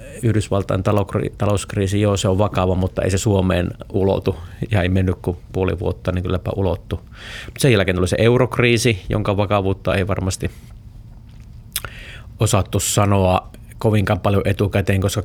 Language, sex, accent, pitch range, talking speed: Finnish, male, native, 95-115 Hz, 140 wpm